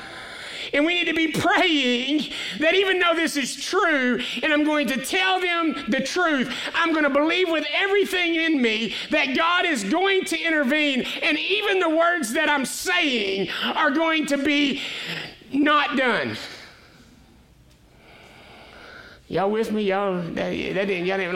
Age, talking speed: 50-69, 145 wpm